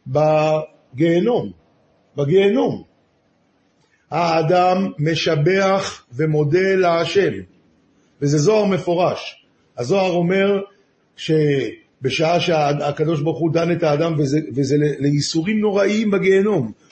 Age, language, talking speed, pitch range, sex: 50-69, Hebrew, 80 wpm, 150-195 Hz, male